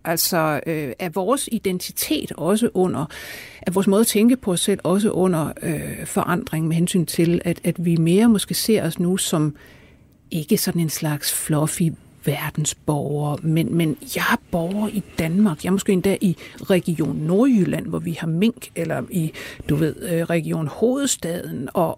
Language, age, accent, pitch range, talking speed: Danish, 60-79, native, 170-220 Hz, 170 wpm